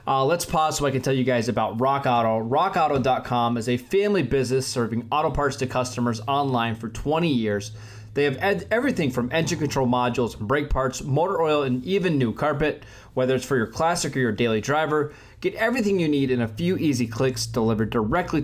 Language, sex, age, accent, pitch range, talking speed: English, male, 20-39, American, 120-150 Hz, 200 wpm